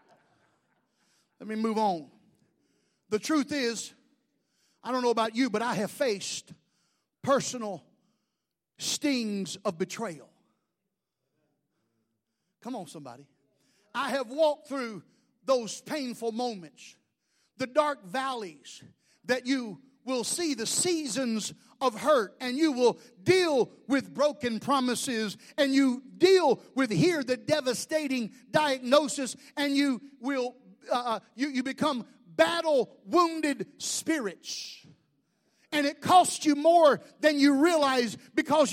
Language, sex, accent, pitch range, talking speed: English, male, American, 225-295 Hz, 115 wpm